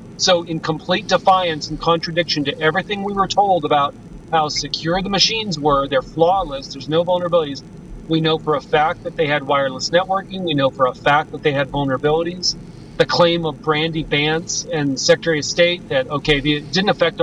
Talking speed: 190 wpm